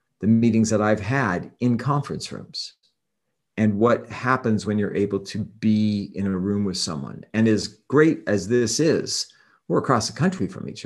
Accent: American